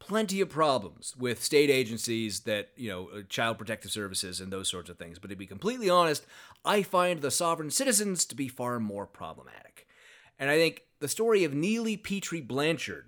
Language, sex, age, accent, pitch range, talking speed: English, male, 30-49, American, 105-155 Hz, 190 wpm